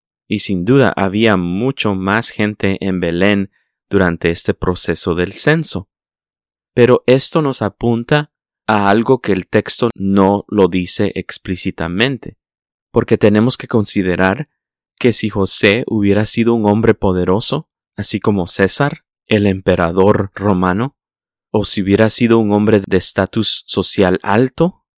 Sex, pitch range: male, 95-115 Hz